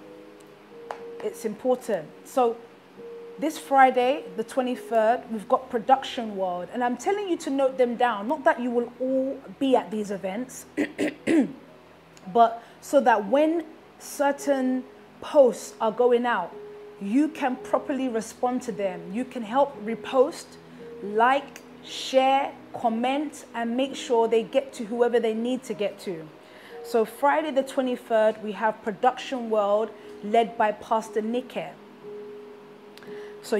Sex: female